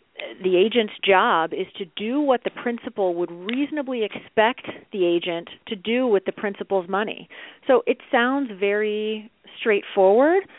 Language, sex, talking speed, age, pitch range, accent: English, female, 140 wpm, 40-59, 180-250 Hz, American